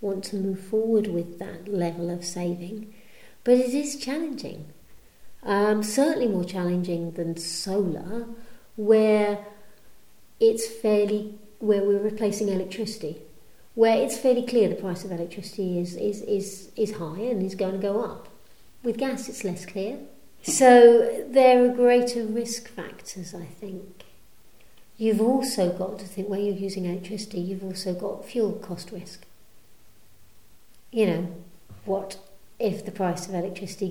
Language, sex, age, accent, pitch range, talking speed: English, female, 50-69, British, 180-225 Hz, 145 wpm